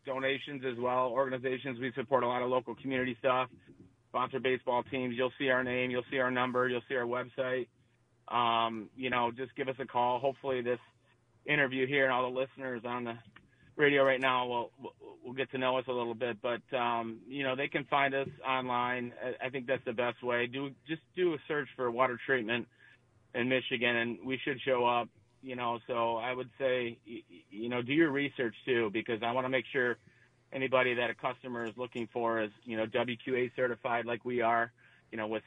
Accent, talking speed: American, 210 wpm